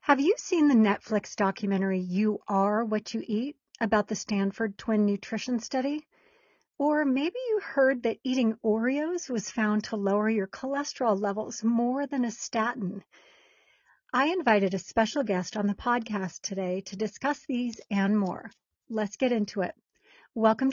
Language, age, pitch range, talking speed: English, 40-59, 205-275 Hz, 155 wpm